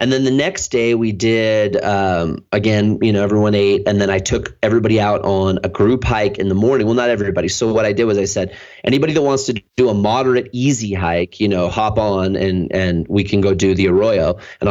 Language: English